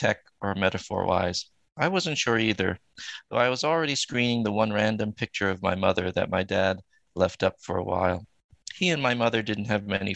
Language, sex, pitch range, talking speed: English, male, 90-110 Hz, 205 wpm